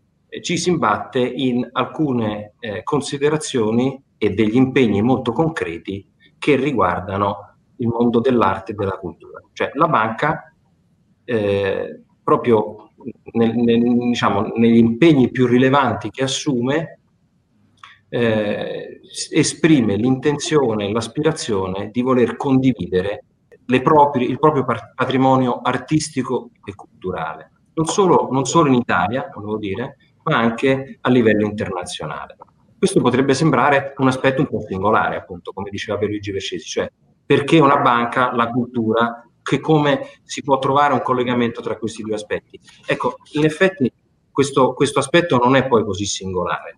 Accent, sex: native, male